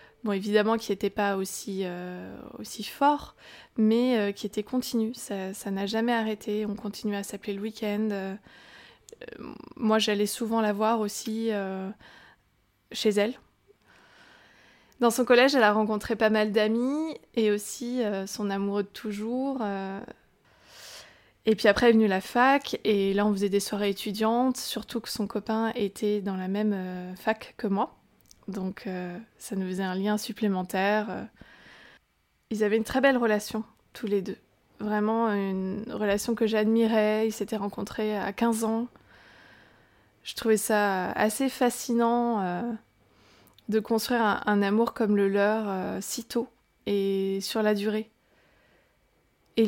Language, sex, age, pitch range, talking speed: French, female, 20-39, 200-230 Hz, 155 wpm